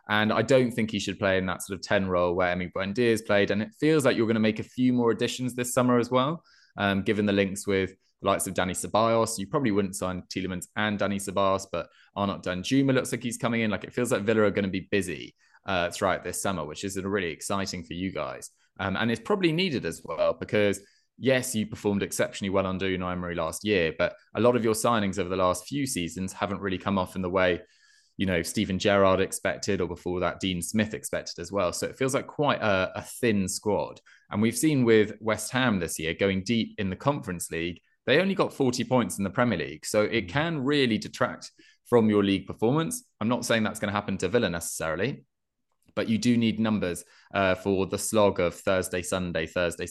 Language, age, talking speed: English, 20-39, 230 wpm